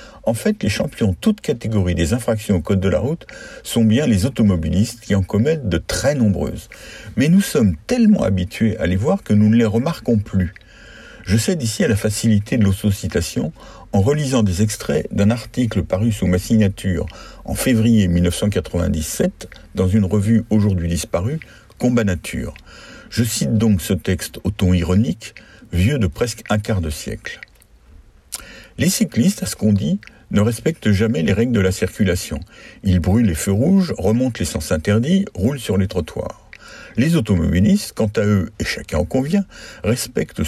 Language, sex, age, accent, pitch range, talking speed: French, male, 60-79, French, 95-115 Hz, 175 wpm